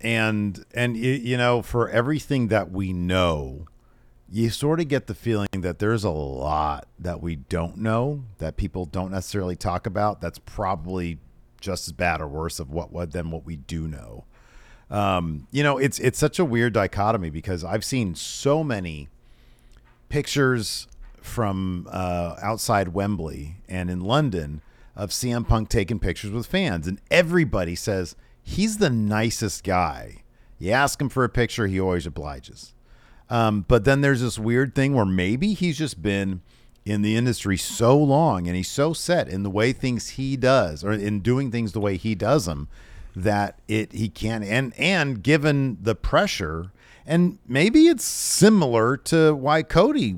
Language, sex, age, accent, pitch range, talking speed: English, male, 40-59, American, 90-130 Hz, 170 wpm